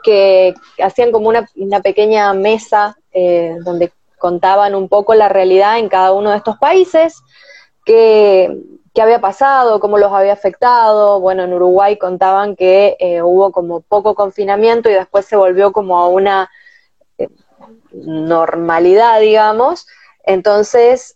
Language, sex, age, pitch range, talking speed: English, female, 20-39, 185-220 Hz, 135 wpm